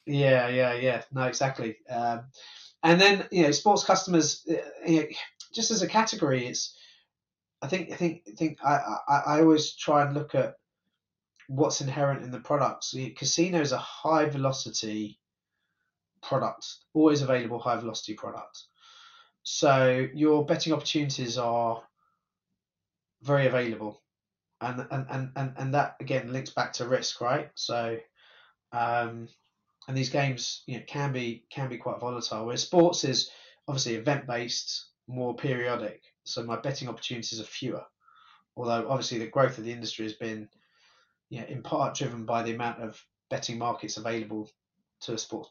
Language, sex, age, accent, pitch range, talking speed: English, male, 20-39, British, 120-150 Hz, 160 wpm